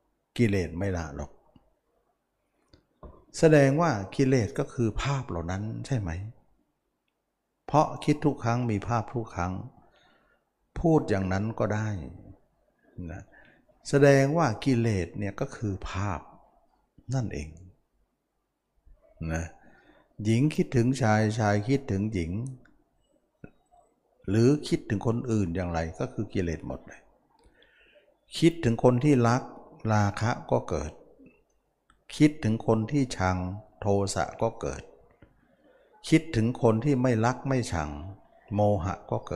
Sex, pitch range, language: male, 90-120 Hz, Thai